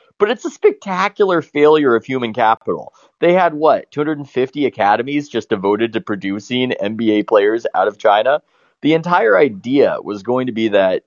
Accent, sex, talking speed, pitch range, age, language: American, male, 165 wpm, 100-130 Hz, 30-49, English